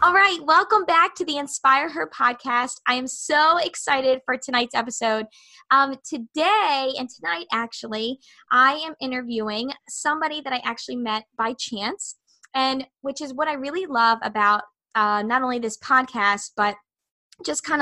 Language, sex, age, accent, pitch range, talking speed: English, female, 20-39, American, 215-260 Hz, 160 wpm